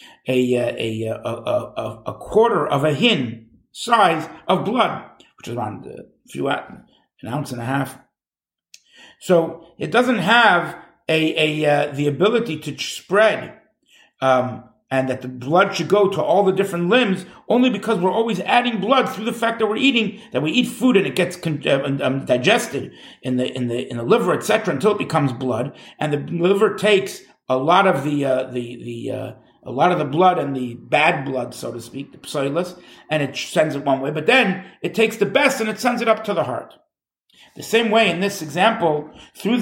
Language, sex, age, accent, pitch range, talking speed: English, male, 50-69, American, 135-205 Hz, 205 wpm